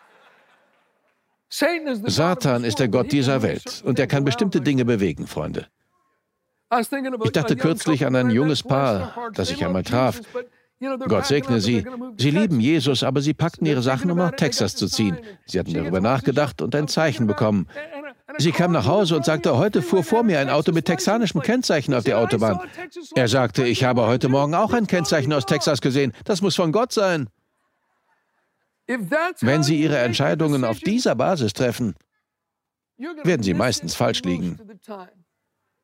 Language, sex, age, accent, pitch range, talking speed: German, male, 60-79, German, 125-210 Hz, 160 wpm